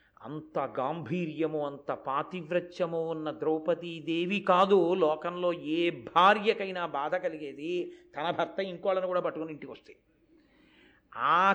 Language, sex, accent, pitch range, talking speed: Telugu, male, native, 175-235 Hz, 100 wpm